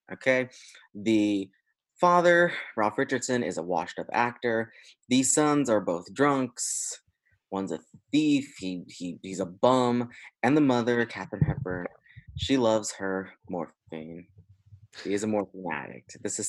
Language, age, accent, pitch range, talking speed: English, 20-39, American, 95-120 Hz, 140 wpm